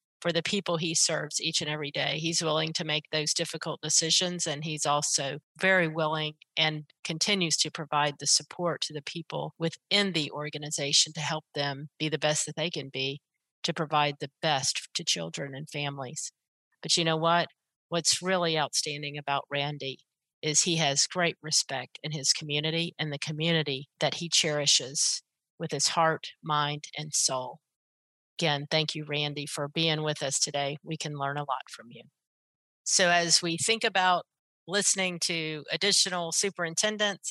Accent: American